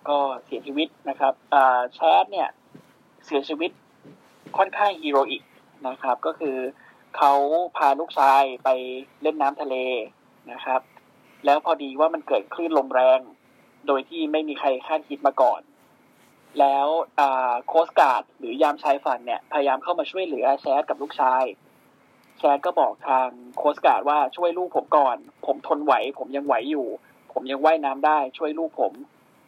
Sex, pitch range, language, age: male, 135-160 Hz, Thai, 20-39